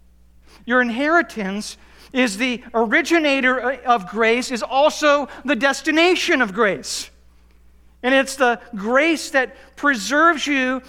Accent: American